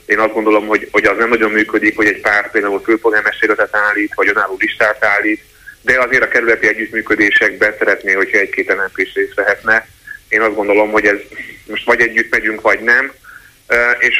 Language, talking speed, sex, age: Hungarian, 180 wpm, male, 30-49